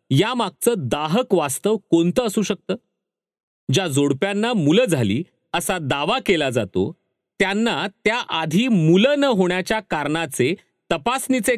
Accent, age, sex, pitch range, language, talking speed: native, 40-59, male, 130-205 Hz, Marathi, 115 wpm